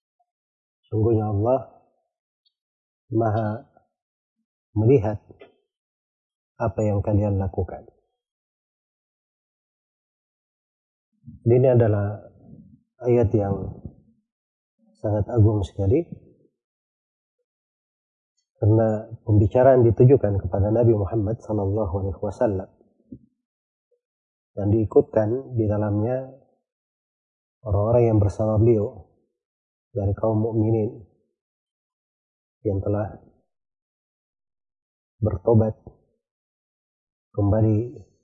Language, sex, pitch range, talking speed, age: Indonesian, male, 100-120 Hz, 60 wpm, 30-49